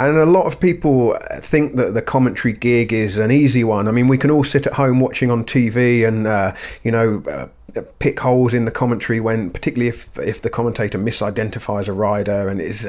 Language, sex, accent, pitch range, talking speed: English, male, British, 105-125 Hz, 215 wpm